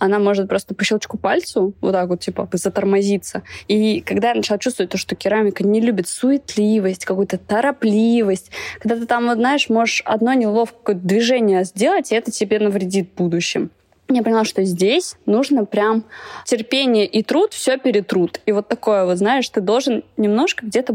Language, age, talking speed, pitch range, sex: Russian, 20-39, 165 wpm, 195-235 Hz, female